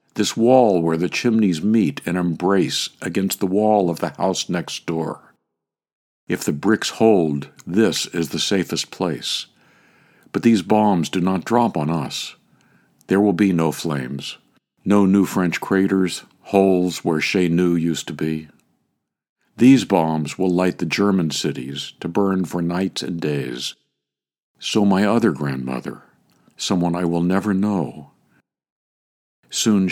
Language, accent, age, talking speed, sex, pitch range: English, American, 60-79, 140 wpm, male, 80-100 Hz